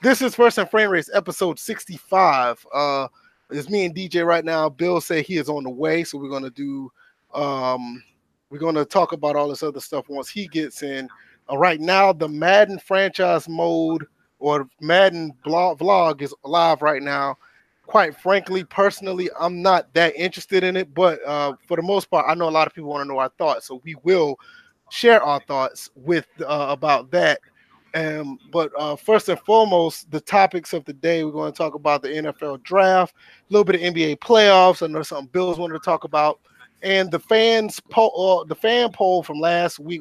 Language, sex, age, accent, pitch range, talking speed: English, male, 20-39, American, 150-185 Hz, 200 wpm